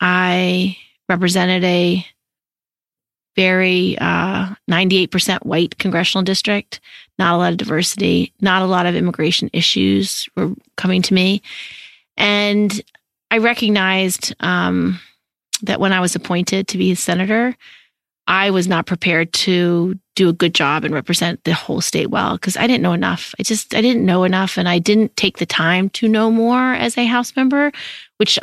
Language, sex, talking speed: English, female, 165 wpm